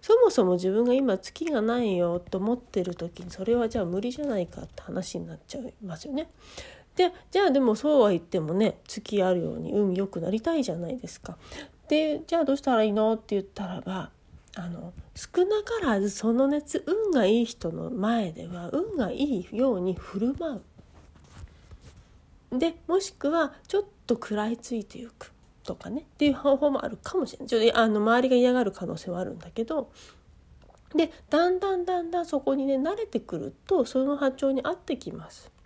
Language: Japanese